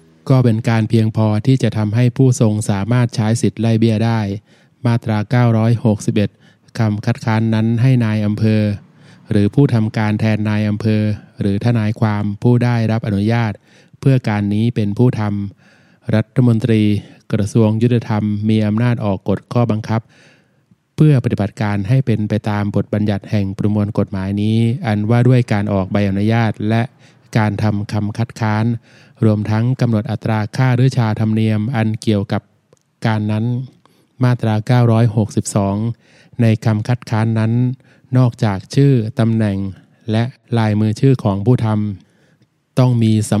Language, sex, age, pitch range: Thai, male, 20-39, 105-125 Hz